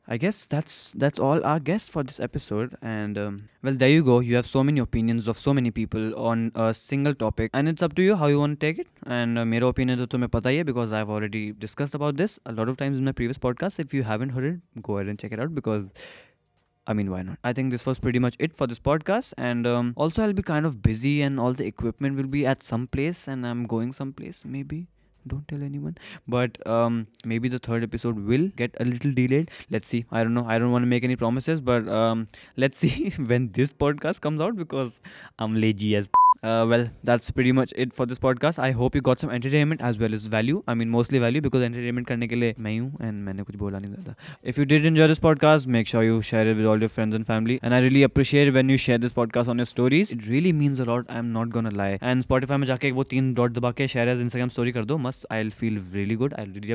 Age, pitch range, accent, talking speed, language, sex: 20-39, 115-140 Hz, native, 260 wpm, Hindi, male